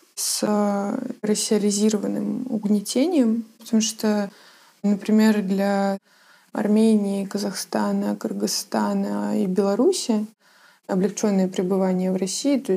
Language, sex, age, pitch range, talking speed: Russian, female, 20-39, 195-225 Hz, 80 wpm